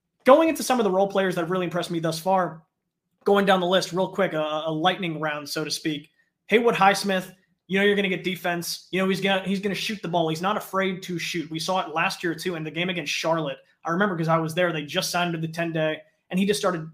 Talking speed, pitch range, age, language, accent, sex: 280 wpm, 160-190 Hz, 20-39, English, American, male